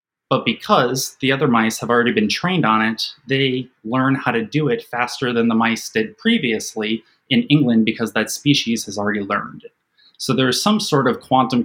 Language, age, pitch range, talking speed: English, 20-39, 110-145 Hz, 195 wpm